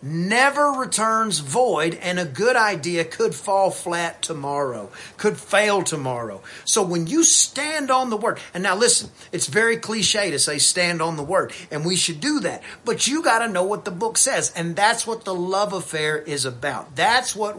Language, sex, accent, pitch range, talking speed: English, male, American, 170-230 Hz, 195 wpm